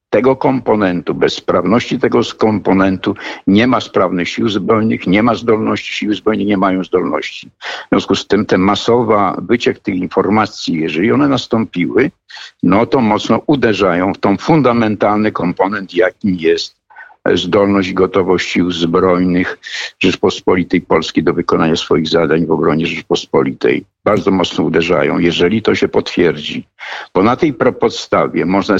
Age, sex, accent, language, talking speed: 50-69, male, native, Polish, 140 wpm